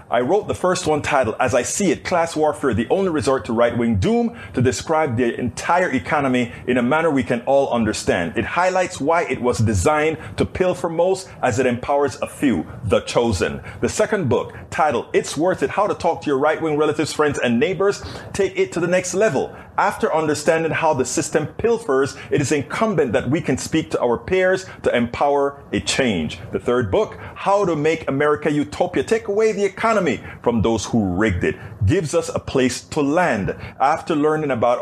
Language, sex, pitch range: English, male, 125-175 Hz